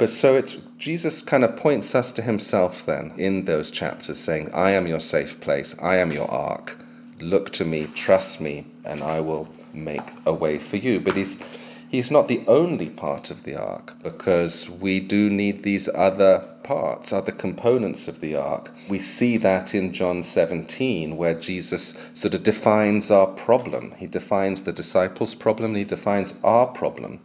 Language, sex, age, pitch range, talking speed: English, male, 30-49, 80-100 Hz, 180 wpm